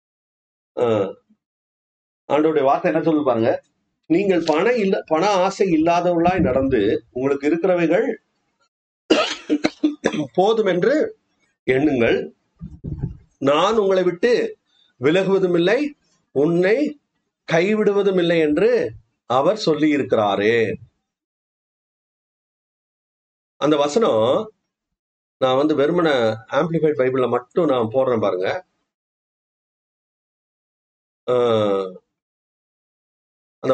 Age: 40-59